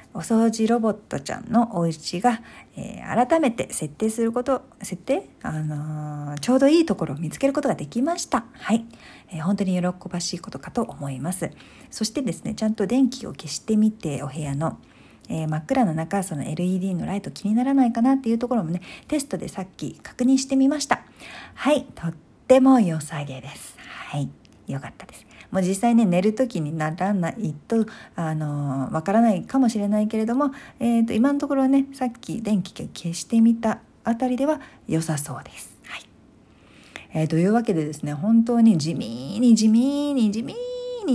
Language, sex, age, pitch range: Japanese, female, 50-69, 165-240 Hz